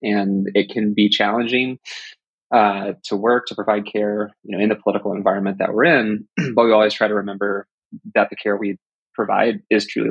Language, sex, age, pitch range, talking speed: English, male, 20-39, 100-110 Hz, 195 wpm